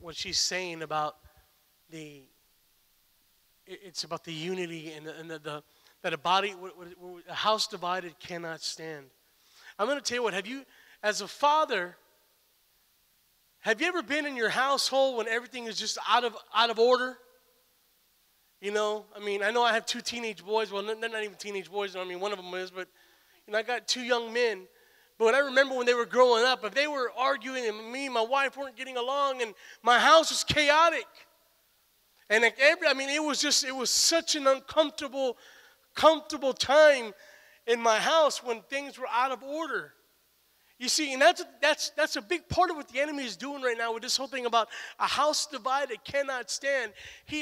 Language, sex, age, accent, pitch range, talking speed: English, male, 20-39, American, 215-295 Hz, 190 wpm